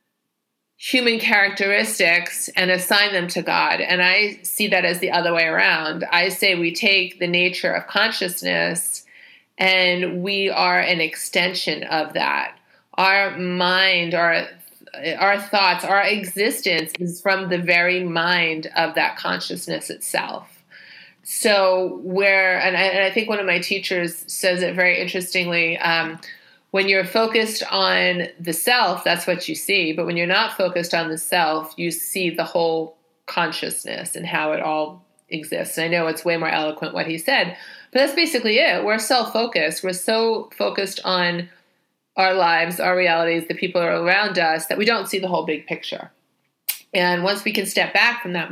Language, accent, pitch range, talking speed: English, American, 170-195 Hz, 165 wpm